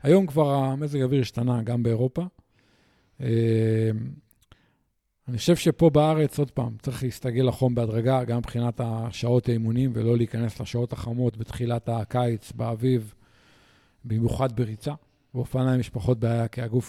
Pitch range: 115-135 Hz